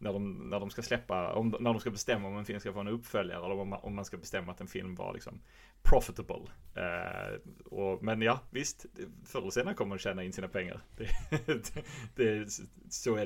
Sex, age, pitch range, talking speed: male, 30-49, 95-120 Hz, 220 wpm